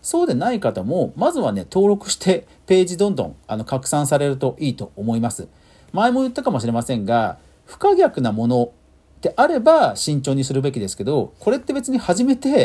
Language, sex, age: Japanese, male, 40-59